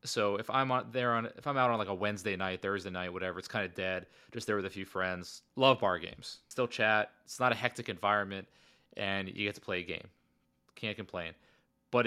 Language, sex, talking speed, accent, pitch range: English, male, 235 wpm, American, 100-120 Hz